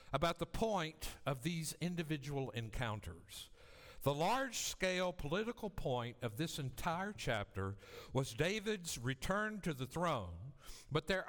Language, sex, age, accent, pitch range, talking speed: English, male, 60-79, American, 110-165 Hz, 120 wpm